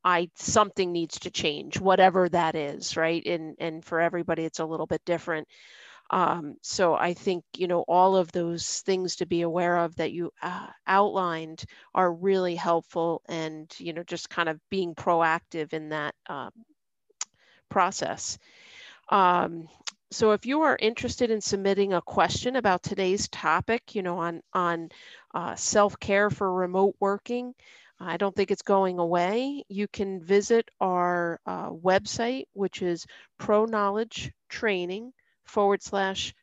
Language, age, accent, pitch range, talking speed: English, 40-59, American, 170-200 Hz, 150 wpm